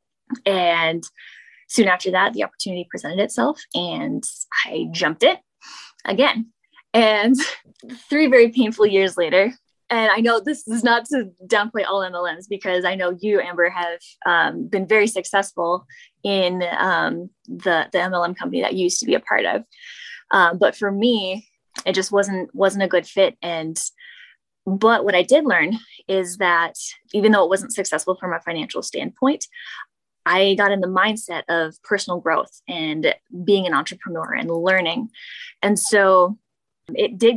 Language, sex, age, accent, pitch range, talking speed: English, female, 10-29, American, 185-235 Hz, 160 wpm